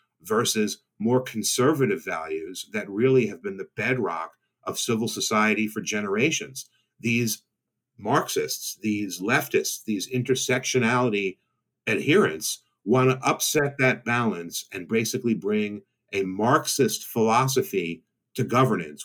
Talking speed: 110 wpm